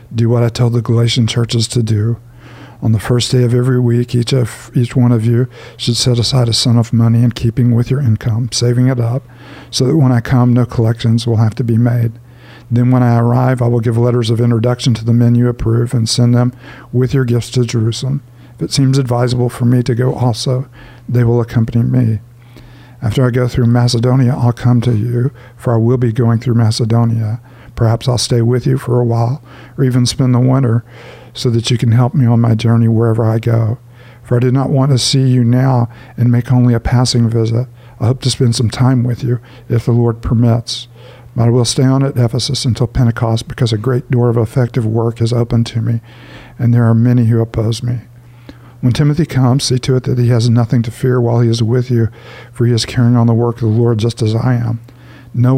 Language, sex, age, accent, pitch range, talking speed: English, male, 50-69, American, 115-125 Hz, 230 wpm